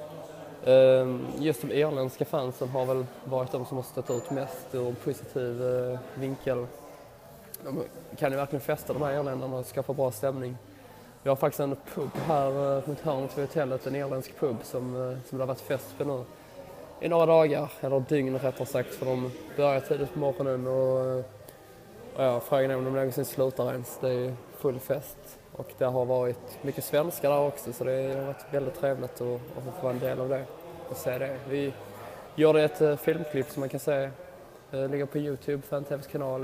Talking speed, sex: 185 wpm, male